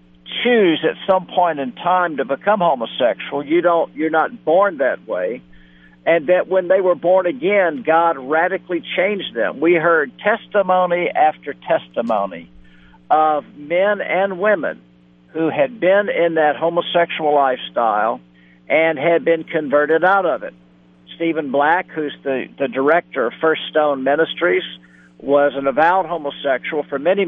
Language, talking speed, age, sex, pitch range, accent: English, 145 wpm, 60-79, male, 135-180 Hz, American